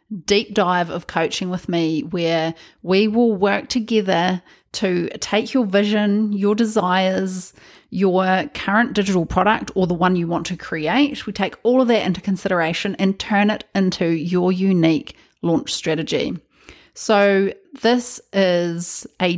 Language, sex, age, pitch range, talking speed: English, female, 30-49, 175-215 Hz, 145 wpm